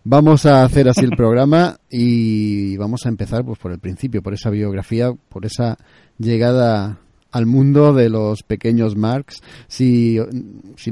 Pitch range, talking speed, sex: 110-130 Hz, 155 wpm, male